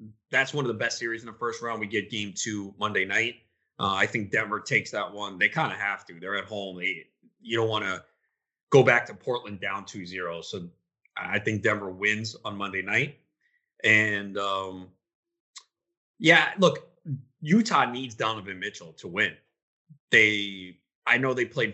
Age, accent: 30-49, American